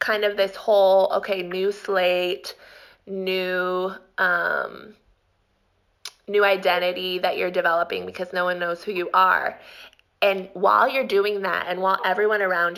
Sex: female